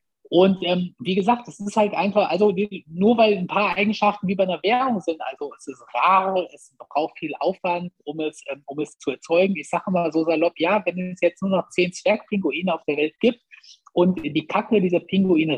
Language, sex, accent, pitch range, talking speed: German, male, German, 160-205 Hz, 220 wpm